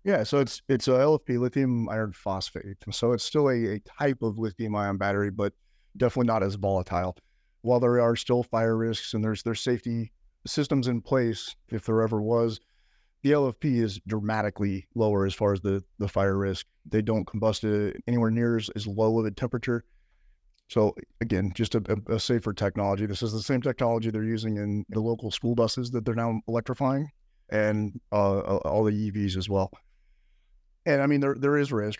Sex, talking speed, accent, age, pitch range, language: male, 190 wpm, American, 30-49, 105-120 Hz, English